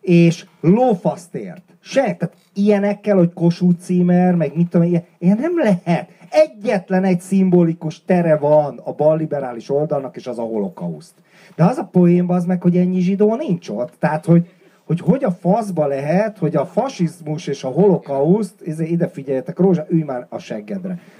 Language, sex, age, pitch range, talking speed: Hungarian, male, 40-59, 155-195 Hz, 165 wpm